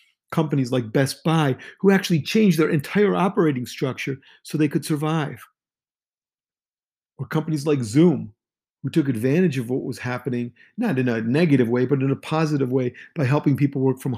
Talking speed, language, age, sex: 175 wpm, English, 50-69, male